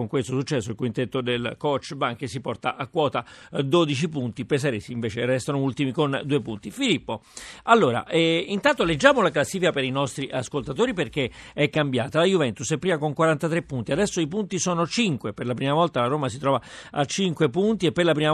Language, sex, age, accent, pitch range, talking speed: Italian, male, 50-69, native, 135-180 Hz, 205 wpm